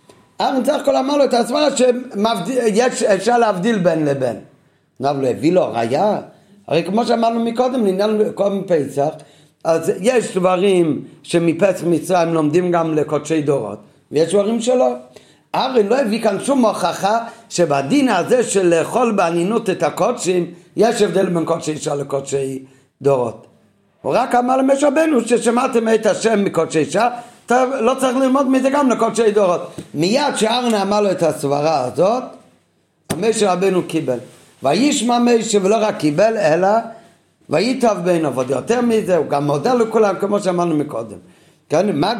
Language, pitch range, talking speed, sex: Hebrew, 165-230 Hz, 145 wpm, male